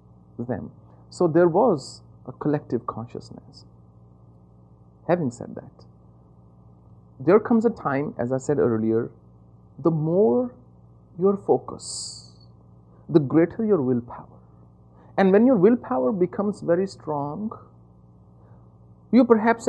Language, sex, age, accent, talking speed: English, male, 50-69, Indian, 105 wpm